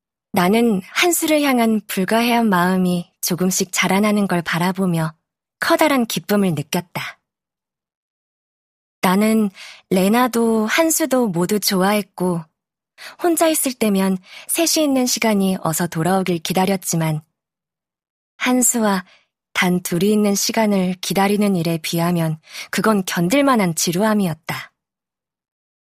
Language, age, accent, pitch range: Korean, 20-39, native, 180-220 Hz